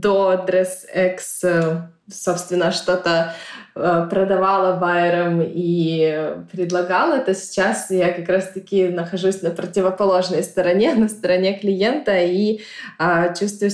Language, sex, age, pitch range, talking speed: Russian, female, 20-39, 180-200 Hz, 90 wpm